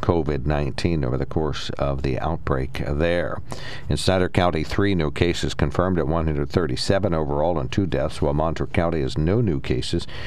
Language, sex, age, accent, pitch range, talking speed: English, male, 60-79, American, 75-90 Hz, 165 wpm